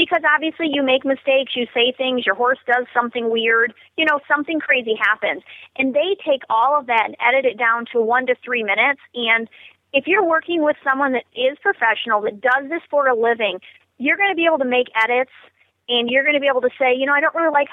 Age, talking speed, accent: 30-49, 235 wpm, American